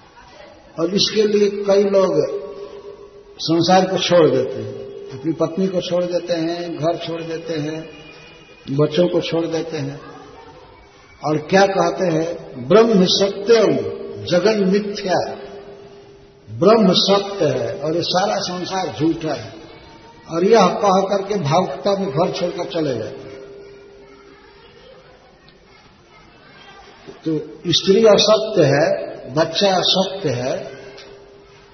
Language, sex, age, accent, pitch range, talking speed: Hindi, male, 60-79, native, 160-200 Hz, 115 wpm